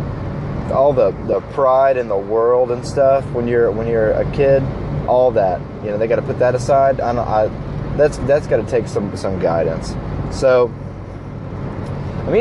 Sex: male